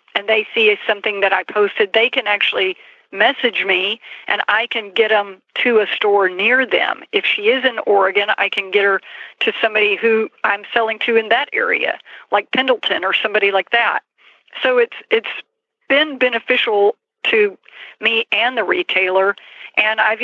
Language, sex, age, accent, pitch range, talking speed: English, female, 40-59, American, 200-260 Hz, 170 wpm